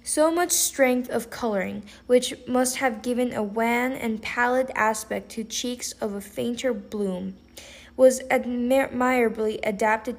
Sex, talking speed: female, 135 wpm